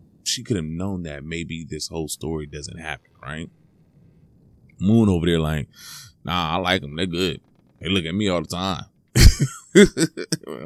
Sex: male